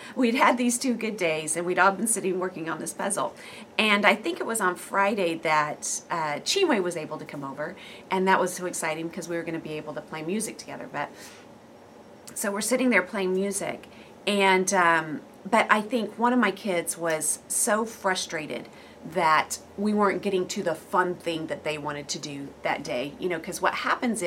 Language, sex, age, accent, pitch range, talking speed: English, female, 40-59, American, 160-200 Hz, 210 wpm